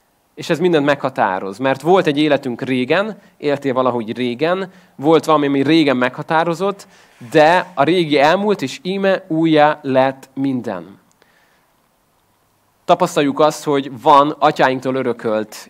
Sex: male